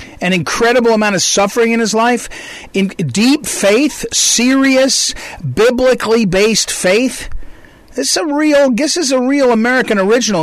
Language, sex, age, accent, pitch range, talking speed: English, male, 50-69, American, 175-230 Hz, 145 wpm